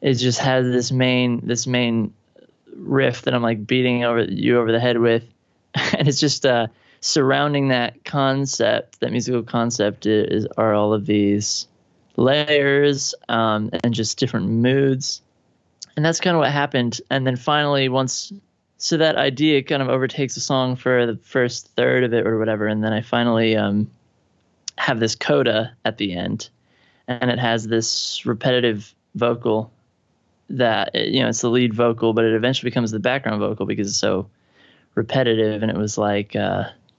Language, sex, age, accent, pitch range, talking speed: English, male, 20-39, American, 110-135 Hz, 170 wpm